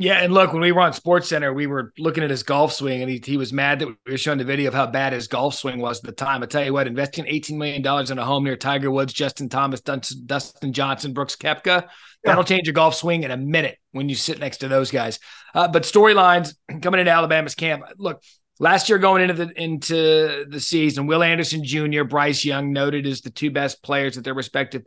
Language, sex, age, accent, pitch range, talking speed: English, male, 30-49, American, 135-170 Hz, 250 wpm